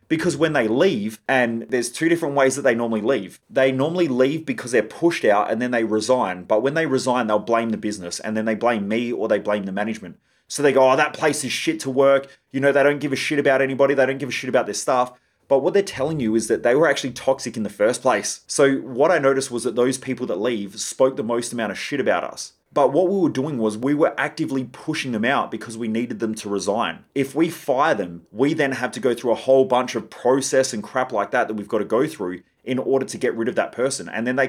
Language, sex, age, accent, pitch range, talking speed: English, male, 30-49, Australian, 110-135 Hz, 270 wpm